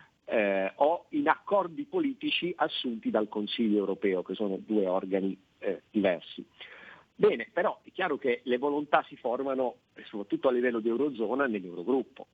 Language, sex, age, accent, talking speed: Italian, male, 50-69, native, 145 wpm